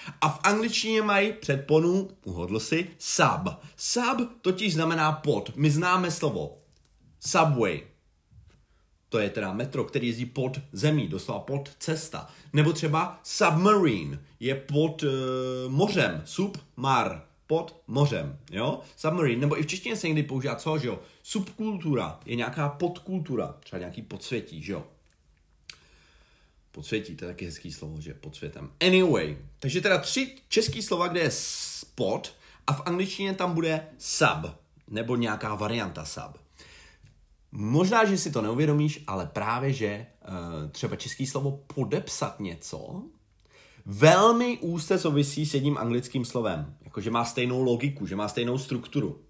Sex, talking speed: male, 140 wpm